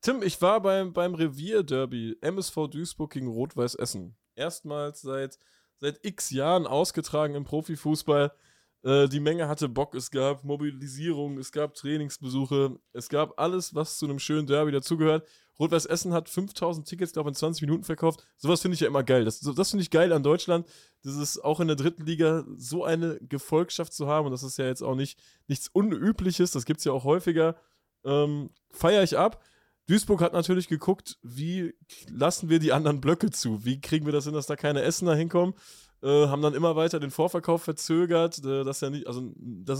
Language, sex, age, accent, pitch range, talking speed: German, male, 20-39, German, 140-165 Hz, 190 wpm